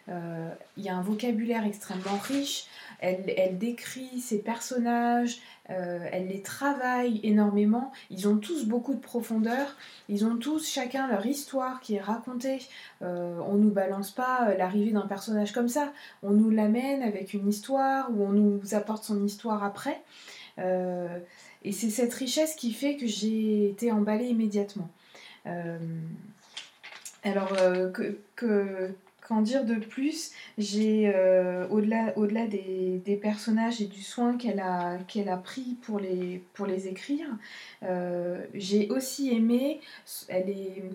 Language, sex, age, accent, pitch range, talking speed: French, female, 20-39, French, 195-240 Hz, 150 wpm